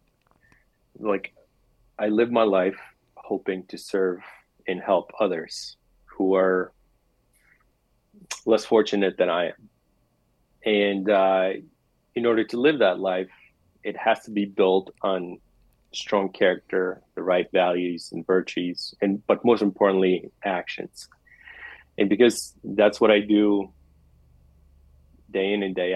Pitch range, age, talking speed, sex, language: 90-105 Hz, 30-49, 125 wpm, male, English